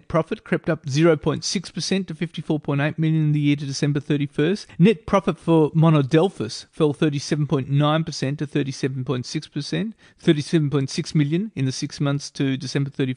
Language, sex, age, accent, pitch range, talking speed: English, male, 30-49, Australian, 140-165 Hz, 130 wpm